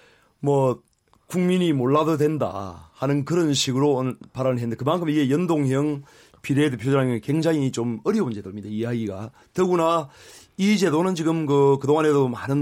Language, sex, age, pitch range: Korean, male, 30-49, 125-155 Hz